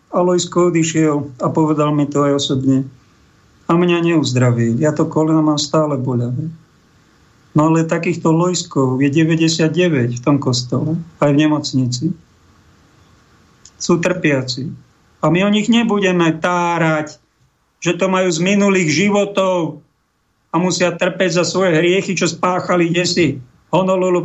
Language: Slovak